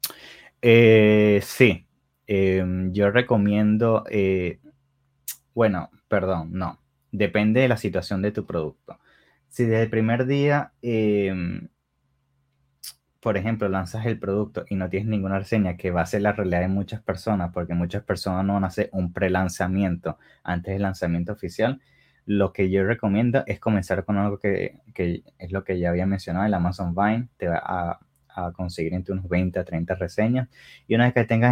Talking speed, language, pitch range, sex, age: 170 wpm, English, 90-110 Hz, male, 20-39